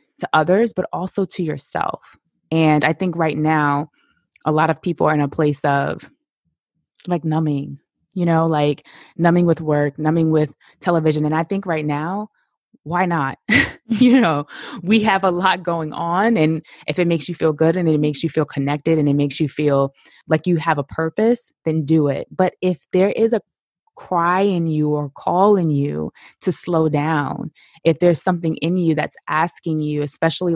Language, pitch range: English, 150-170 Hz